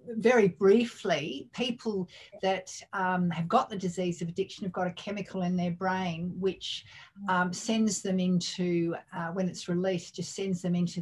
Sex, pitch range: female, 170-195 Hz